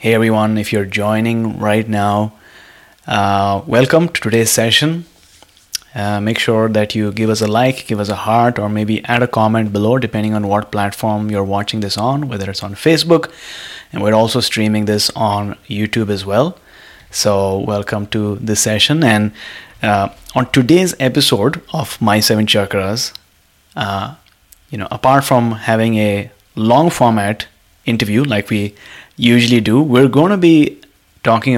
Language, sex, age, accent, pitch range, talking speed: English, male, 20-39, Indian, 105-130 Hz, 160 wpm